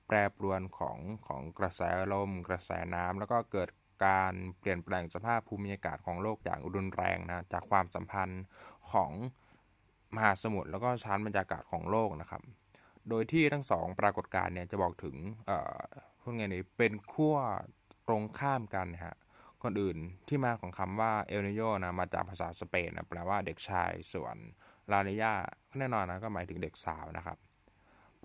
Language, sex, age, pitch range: Thai, male, 20-39, 90-110 Hz